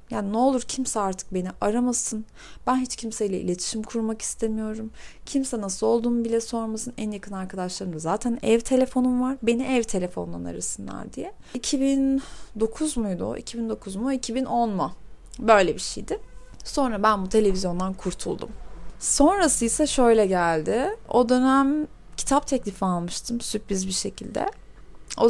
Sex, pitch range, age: female, 195-255 Hz, 30-49